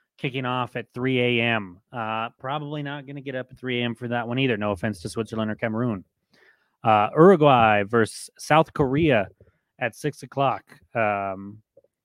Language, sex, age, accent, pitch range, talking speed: English, male, 30-49, American, 105-130 Hz, 170 wpm